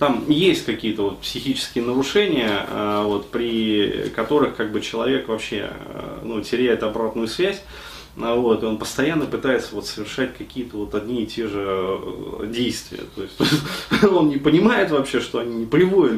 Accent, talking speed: native, 150 wpm